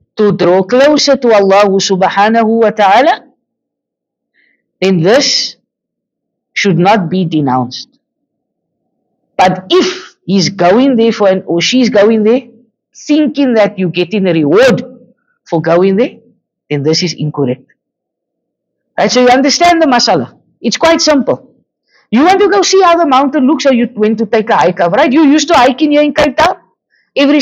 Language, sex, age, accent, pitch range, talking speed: English, female, 50-69, Indian, 205-285 Hz, 160 wpm